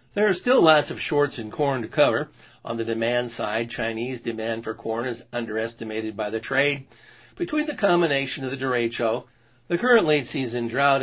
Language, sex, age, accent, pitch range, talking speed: English, male, 60-79, American, 115-140 Hz, 185 wpm